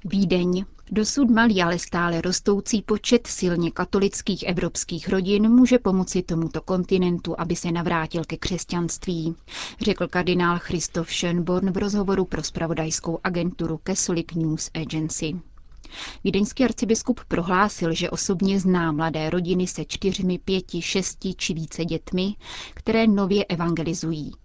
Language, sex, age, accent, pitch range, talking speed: Czech, female, 30-49, native, 170-195 Hz, 125 wpm